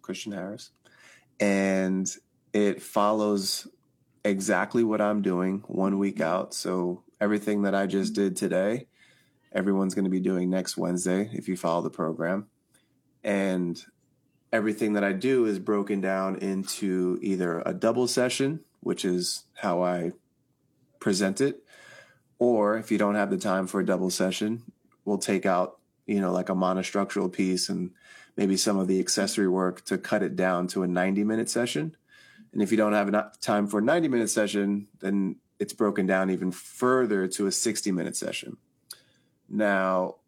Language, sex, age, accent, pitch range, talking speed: English, male, 30-49, American, 95-105 Hz, 165 wpm